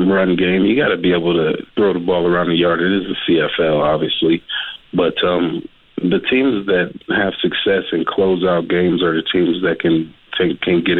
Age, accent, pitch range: 30-49, American, 85-90 Hz